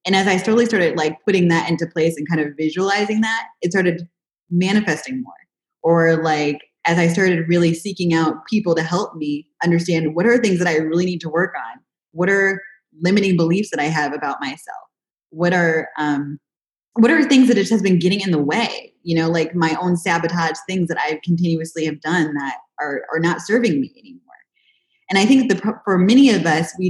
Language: English